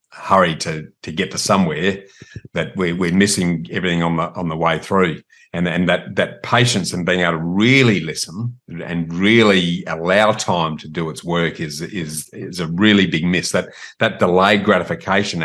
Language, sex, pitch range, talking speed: English, male, 85-105 Hz, 180 wpm